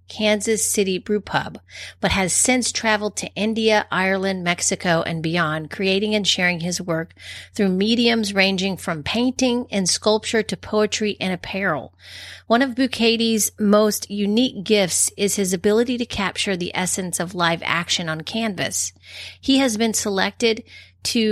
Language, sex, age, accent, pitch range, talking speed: English, female, 40-59, American, 175-215 Hz, 150 wpm